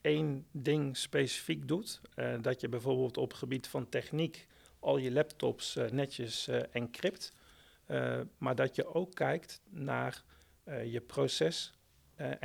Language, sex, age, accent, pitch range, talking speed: Dutch, male, 50-69, Dutch, 115-145 Hz, 145 wpm